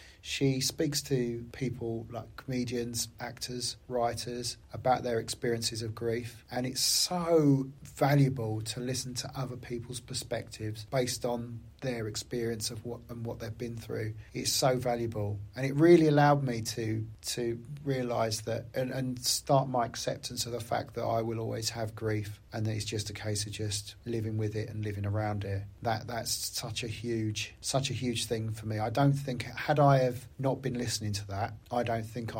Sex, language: male, English